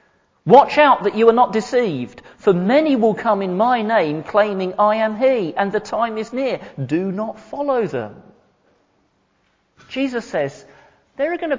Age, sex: 40-59, male